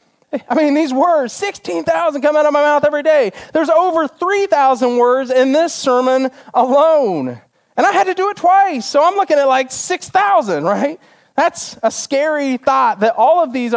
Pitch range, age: 180-270 Hz, 30-49